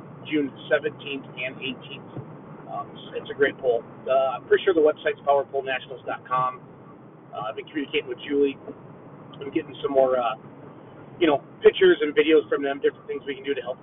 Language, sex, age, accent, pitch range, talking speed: English, male, 30-49, American, 140-220 Hz, 180 wpm